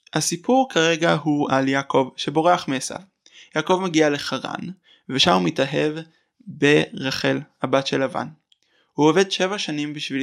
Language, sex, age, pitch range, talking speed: Hebrew, male, 20-39, 140-185 Hz, 130 wpm